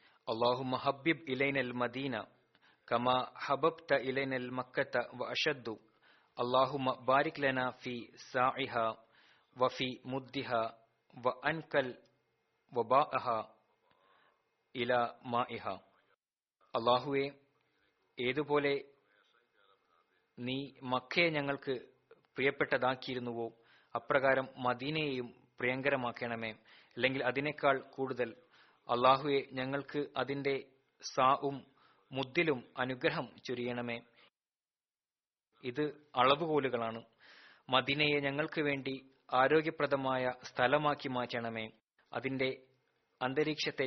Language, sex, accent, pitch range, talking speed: Malayalam, male, native, 125-140 Hz, 45 wpm